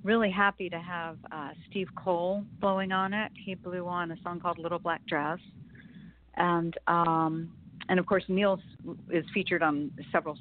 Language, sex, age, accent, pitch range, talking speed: English, female, 40-59, American, 160-195 Hz, 165 wpm